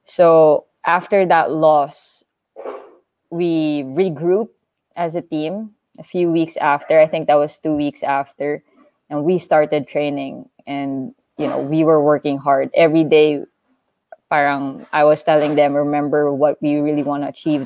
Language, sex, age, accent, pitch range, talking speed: English, female, 20-39, Filipino, 150-180 Hz, 155 wpm